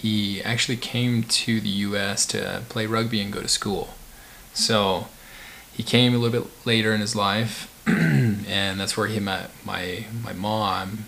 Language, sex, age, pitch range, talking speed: English, male, 20-39, 105-120 Hz, 170 wpm